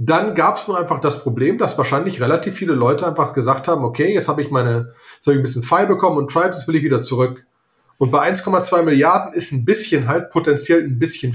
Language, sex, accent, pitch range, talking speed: German, male, German, 130-165 Hz, 240 wpm